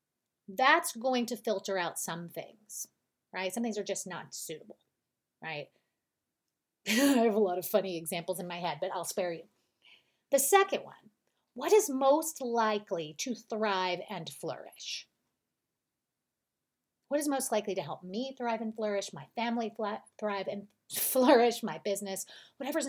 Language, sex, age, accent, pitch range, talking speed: English, female, 30-49, American, 190-245 Hz, 150 wpm